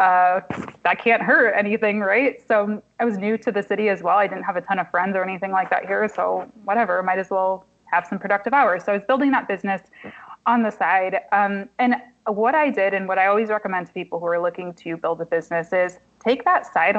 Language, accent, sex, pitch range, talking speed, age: English, American, female, 180-225 Hz, 240 wpm, 20-39